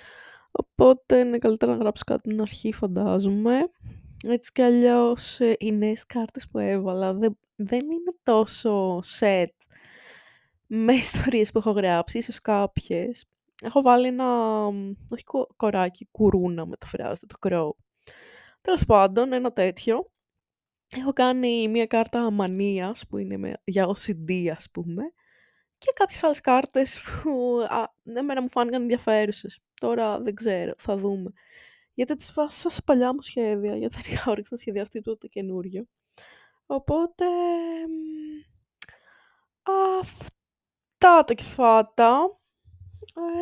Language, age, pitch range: Greek, 20-39, 210-295 Hz